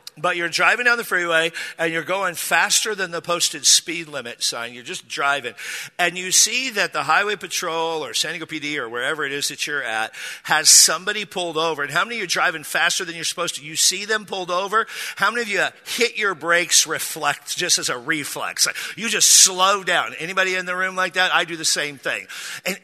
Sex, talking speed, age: male, 225 wpm, 50-69